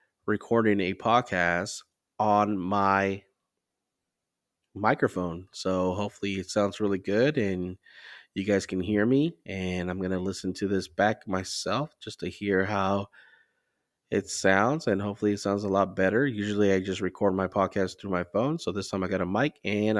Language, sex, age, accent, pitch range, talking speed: English, male, 20-39, American, 95-110 Hz, 170 wpm